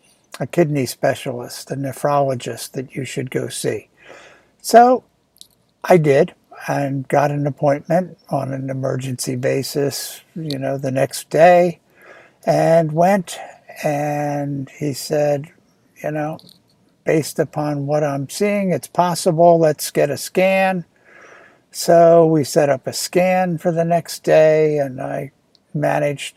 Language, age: English, 60-79